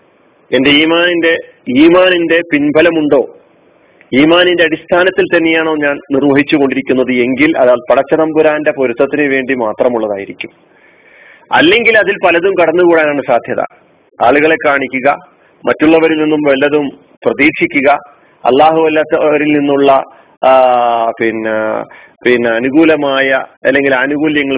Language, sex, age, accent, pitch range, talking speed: Malayalam, male, 40-59, native, 125-160 Hz, 85 wpm